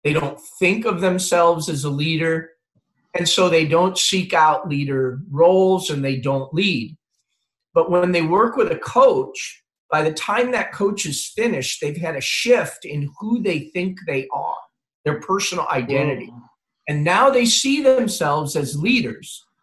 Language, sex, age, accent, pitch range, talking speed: English, male, 40-59, American, 145-195 Hz, 165 wpm